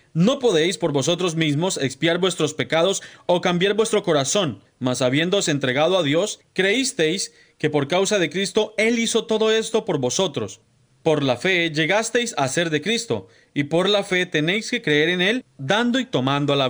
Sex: male